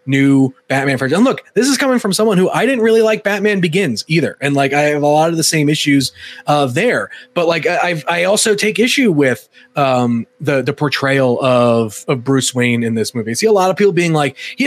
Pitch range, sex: 145-225 Hz, male